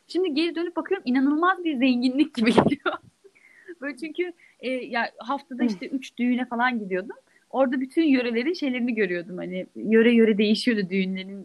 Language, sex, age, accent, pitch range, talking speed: Turkish, female, 10-29, native, 220-290 Hz, 150 wpm